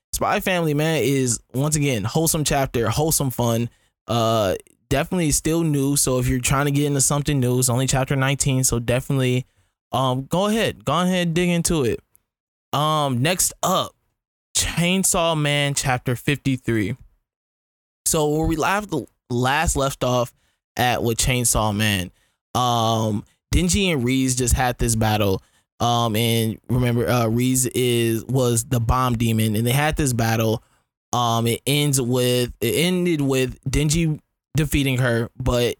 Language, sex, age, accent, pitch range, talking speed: English, male, 20-39, American, 115-140 Hz, 150 wpm